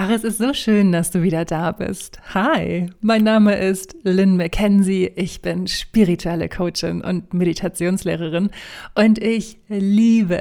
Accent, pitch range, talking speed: German, 170-195 Hz, 145 wpm